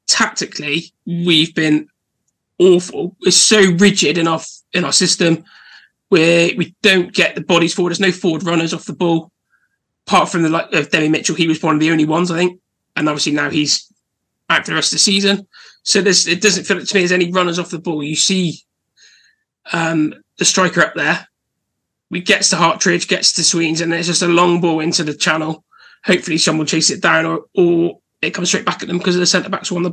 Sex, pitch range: male, 165-190 Hz